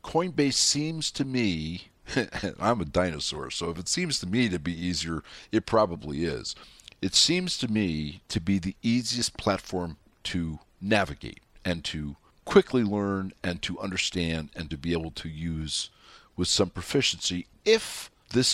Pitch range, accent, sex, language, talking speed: 85-115 Hz, American, male, English, 155 wpm